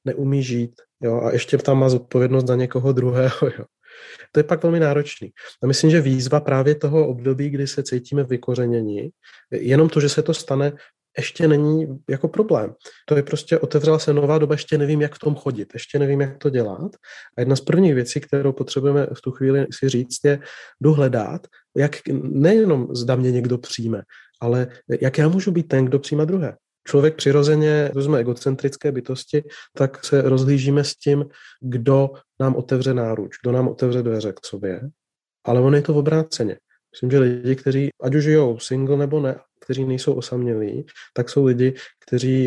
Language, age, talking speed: Czech, 30-49, 180 wpm